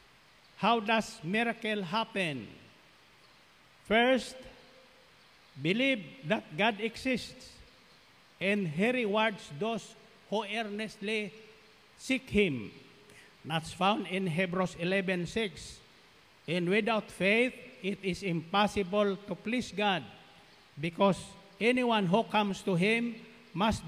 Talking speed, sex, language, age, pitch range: 100 wpm, male, Filipino, 50-69, 190-225 Hz